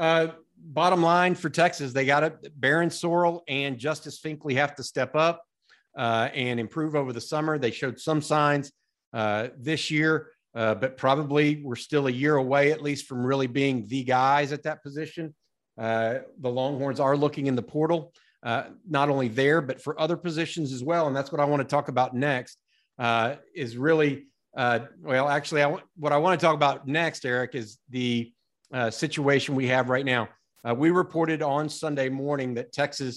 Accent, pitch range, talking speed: American, 130-155 Hz, 195 wpm